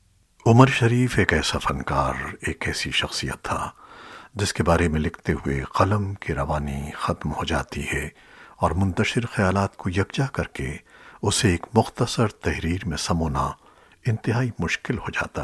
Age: 60-79